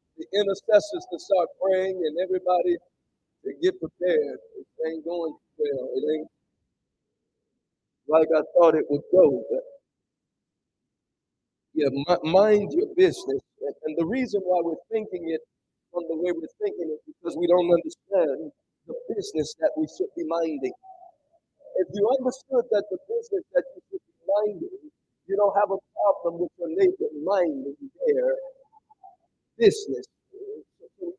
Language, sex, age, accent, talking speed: English, male, 50-69, American, 145 wpm